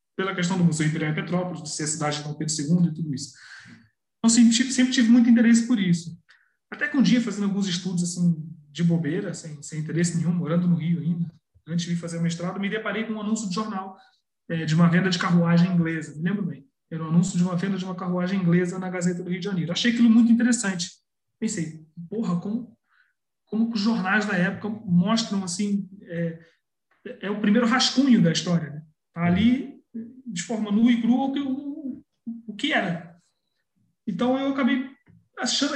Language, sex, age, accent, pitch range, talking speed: Portuguese, male, 20-39, Brazilian, 170-230 Hz, 200 wpm